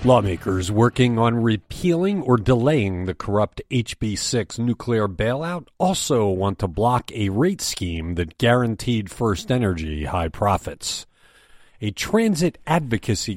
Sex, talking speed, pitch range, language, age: male, 120 wpm, 95-130 Hz, English, 50-69